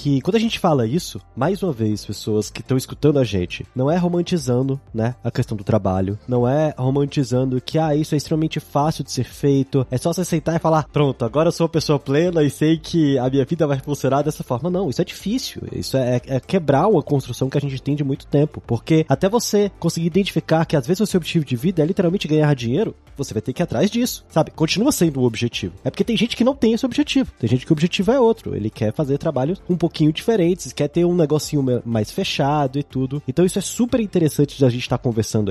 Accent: Brazilian